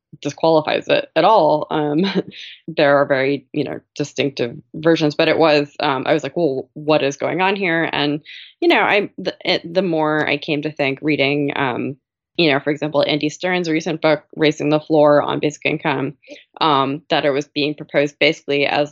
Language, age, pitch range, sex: English, 20-39, 145-165 Hz, female